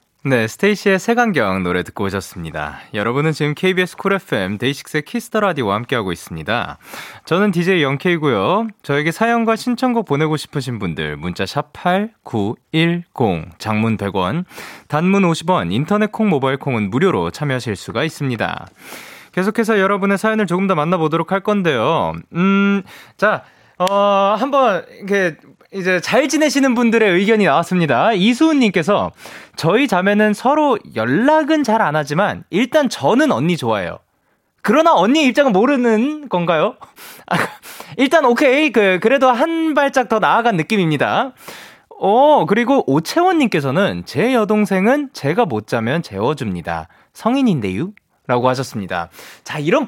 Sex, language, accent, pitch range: male, Korean, native, 145-245 Hz